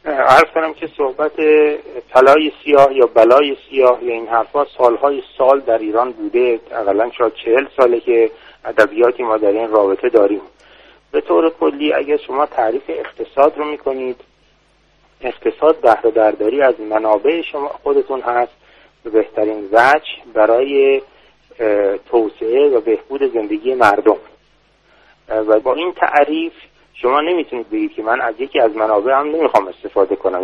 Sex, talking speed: male, 135 wpm